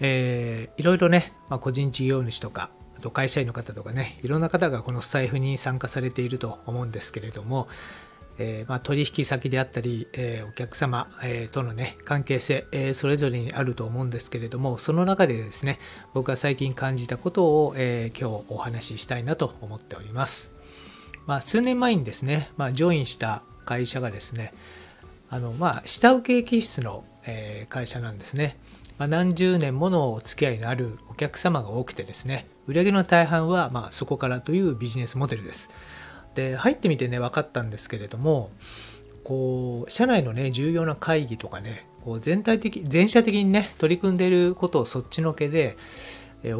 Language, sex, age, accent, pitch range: Japanese, male, 40-59, native, 115-155 Hz